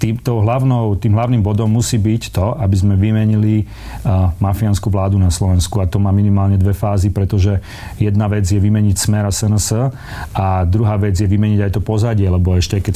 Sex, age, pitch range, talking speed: male, 40-59, 100-115 Hz, 190 wpm